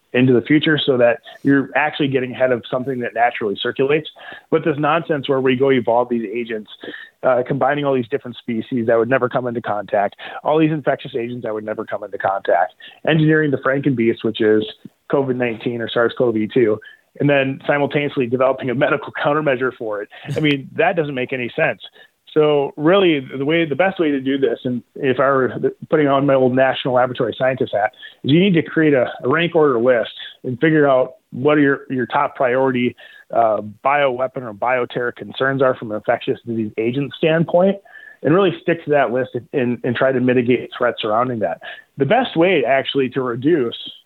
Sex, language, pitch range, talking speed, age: male, English, 125-150 Hz, 190 wpm, 30-49